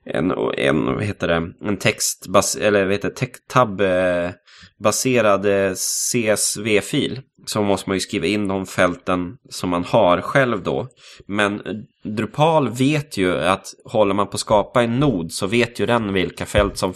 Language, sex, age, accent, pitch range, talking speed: Swedish, male, 20-39, native, 95-125 Hz, 130 wpm